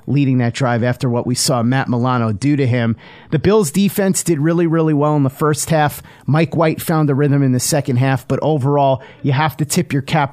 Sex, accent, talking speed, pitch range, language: male, American, 230 wpm, 130-160 Hz, English